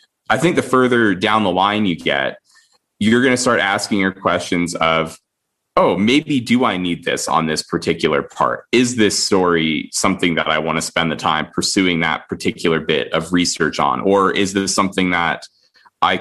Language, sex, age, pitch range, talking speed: English, male, 20-39, 85-110 Hz, 190 wpm